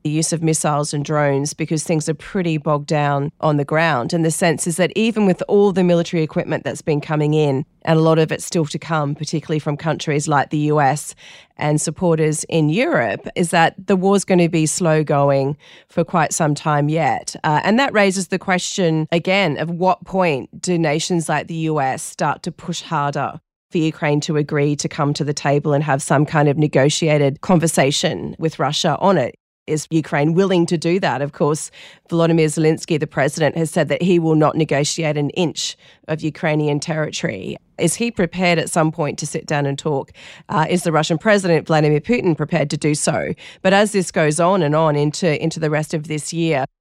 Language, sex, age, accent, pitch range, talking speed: English, female, 30-49, Australian, 150-170 Hz, 205 wpm